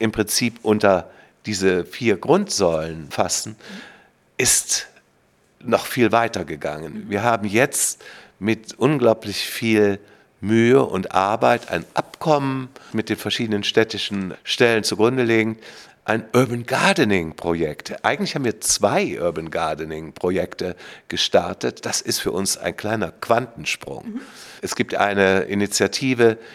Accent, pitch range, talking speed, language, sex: German, 95-115 Hz, 120 wpm, German, male